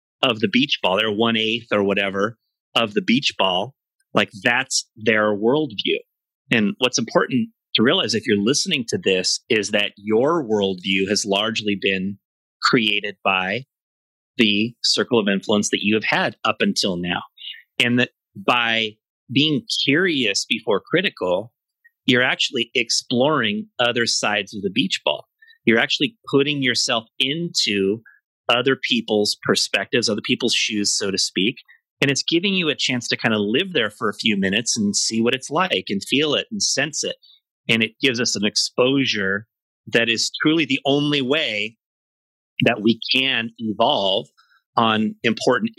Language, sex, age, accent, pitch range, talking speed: English, male, 30-49, American, 105-135 Hz, 160 wpm